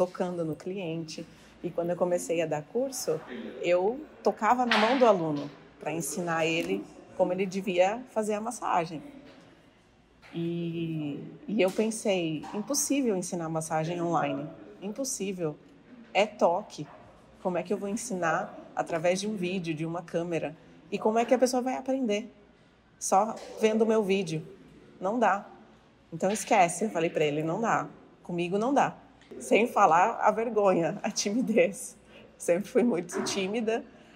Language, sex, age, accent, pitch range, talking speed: Portuguese, female, 30-49, Brazilian, 160-210 Hz, 150 wpm